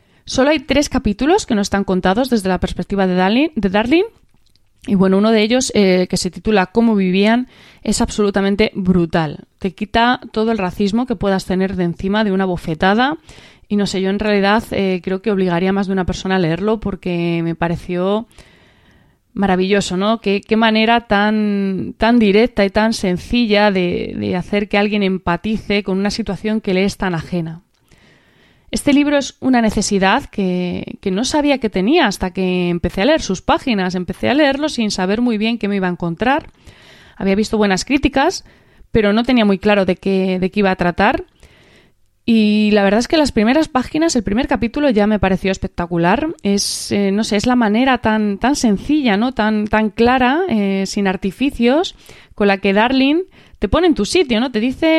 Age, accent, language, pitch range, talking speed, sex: 20-39, Spanish, Spanish, 190-235 Hz, 190 wpm, female